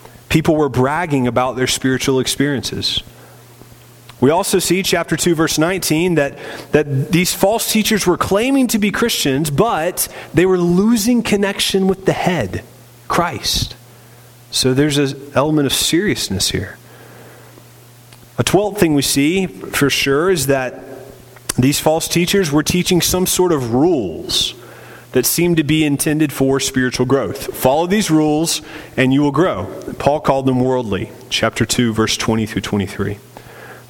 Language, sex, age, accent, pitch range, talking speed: English, male, 30-49, American, 125-170 Hz, 145 wpm